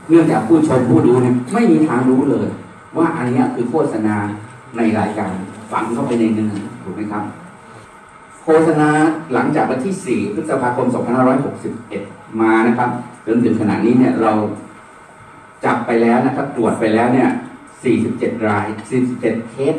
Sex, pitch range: male, 110-130 Hz